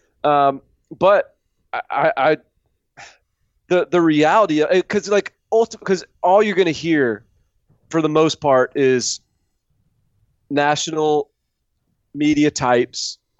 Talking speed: 105 wpm